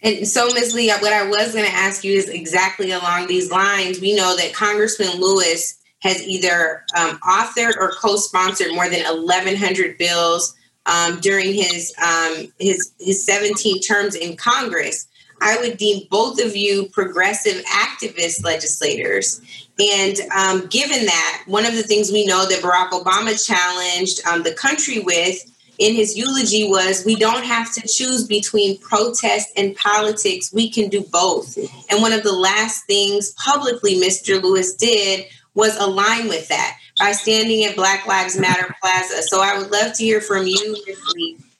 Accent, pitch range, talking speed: American, 185-220 Hz, 165 wpm